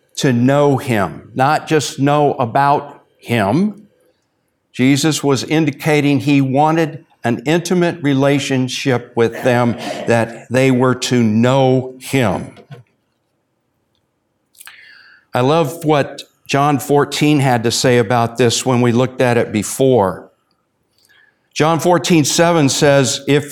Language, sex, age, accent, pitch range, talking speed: English, male, 60-79, American, 120-150 Hz, 115 wpm